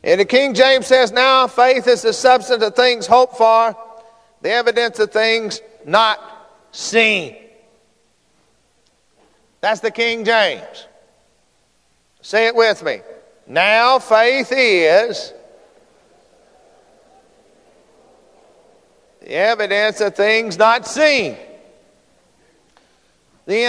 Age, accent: 50-69, American